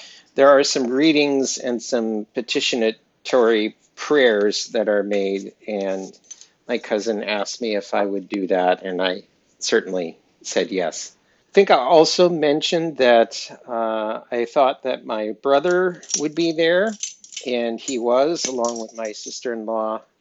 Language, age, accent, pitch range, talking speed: English, 50-69, American, 105-130 Hz, 145 wpm